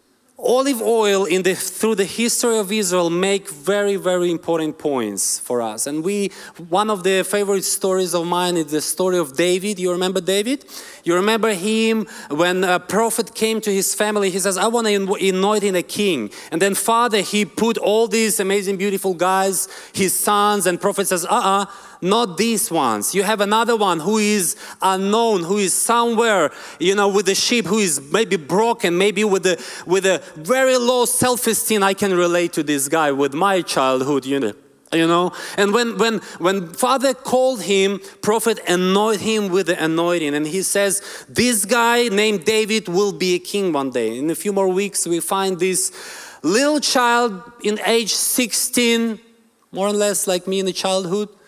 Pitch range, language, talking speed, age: 180-220 Hz, English, 185 wpm, 30-49